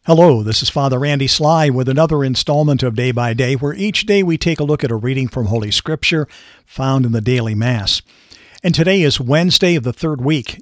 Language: English